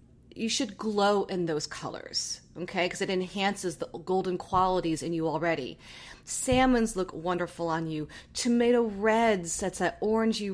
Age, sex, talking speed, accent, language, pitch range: 30-49, female, 150 wpm, American, English, 170-220 Hz